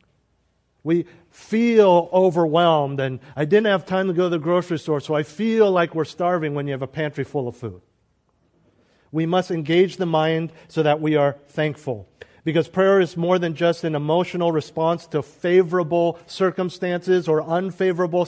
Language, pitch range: English, 145-185 Hz